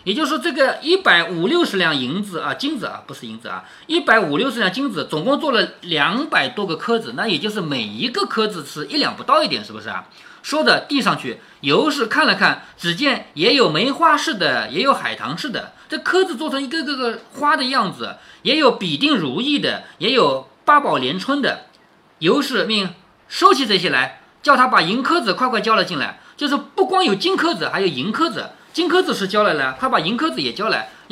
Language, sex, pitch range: Chinese, male, 210-320 Hz